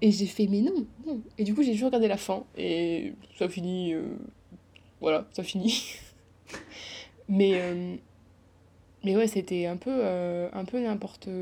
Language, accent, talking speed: French, French, 170 wpm